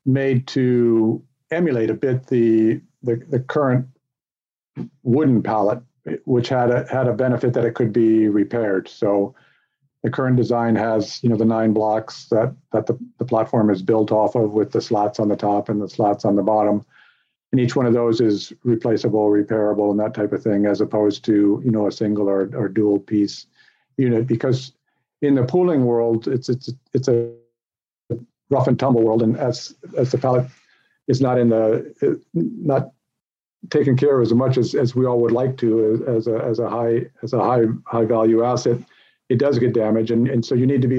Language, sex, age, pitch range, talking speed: English, male, 50-69, 110-125 Hz, 200 wpm